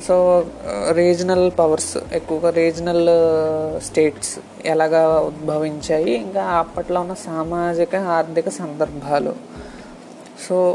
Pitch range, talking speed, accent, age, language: 160-185 Hz, 85 wpm, native, 30-49, Telugu